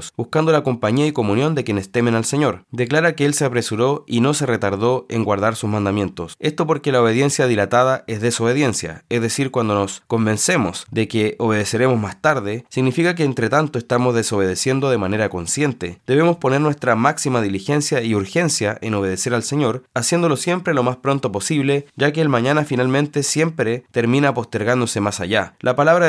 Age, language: 20-39, Spanish